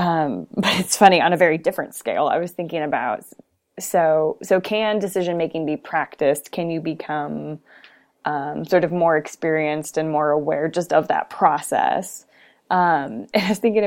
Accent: American